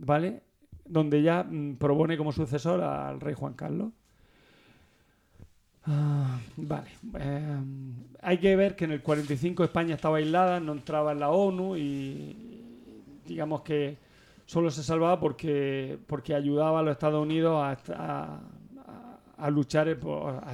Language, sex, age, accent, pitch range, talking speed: Spanish, male, 40-59, Spanish, 140-165 Hz, 135 wpm